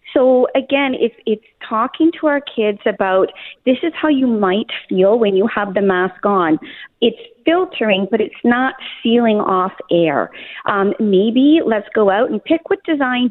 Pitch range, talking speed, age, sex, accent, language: 195-260 Hz, 170 wpm, 30-49, female, American, English